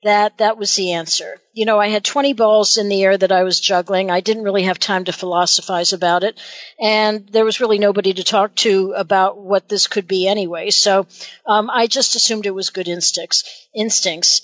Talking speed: 210 wpm